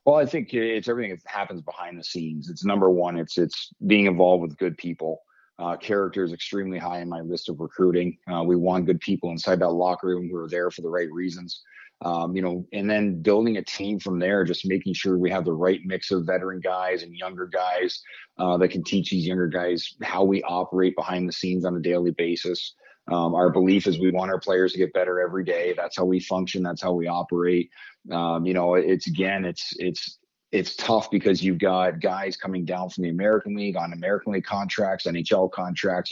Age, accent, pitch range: 30-49, American, 90-100 Hz